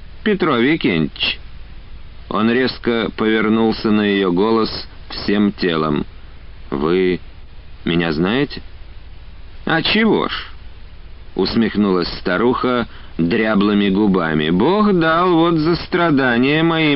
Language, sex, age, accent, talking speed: Russian, male, 50-69, native, 90 wpm